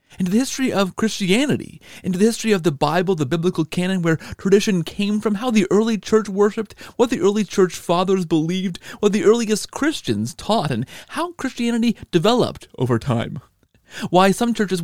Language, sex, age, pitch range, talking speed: English, male, 40-59, 155-220 Hz, 175 wpm